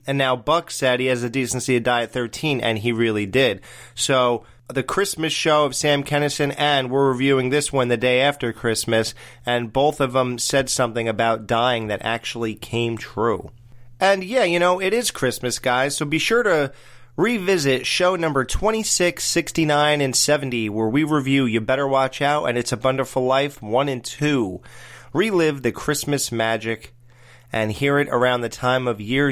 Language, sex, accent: English, male, American